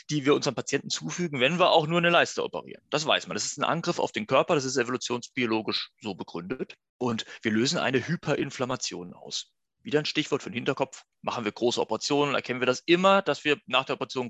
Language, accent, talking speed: German, German, 215 wpm